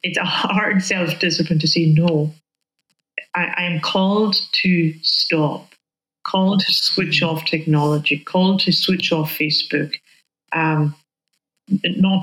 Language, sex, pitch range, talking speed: English, female, 155-185 Hz, 125 wpm